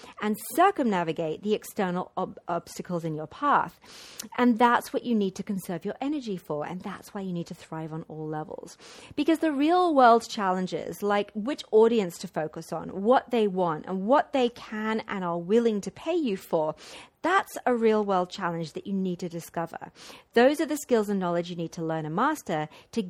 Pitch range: 175-245 Hz